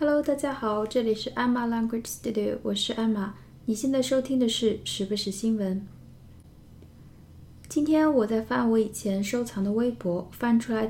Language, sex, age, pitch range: Chinese, female, 20-39, 200-245 Hz